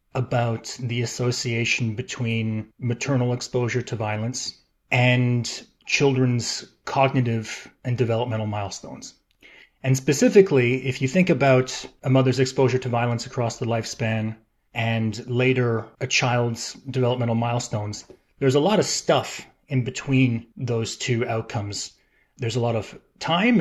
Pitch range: 110-130 Hz